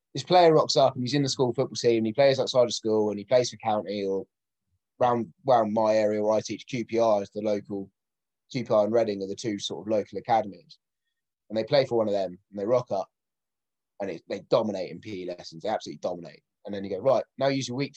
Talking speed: 235 wpm